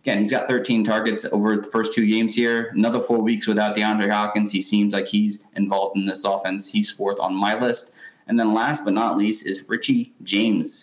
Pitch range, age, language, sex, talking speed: 100-115 Hz, 20-39, English, male, 215 wpm